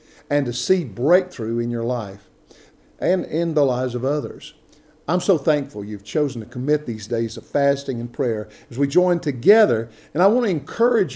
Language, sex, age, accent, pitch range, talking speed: English, male, 50-69, American, 140-185 Hz, 190 wpm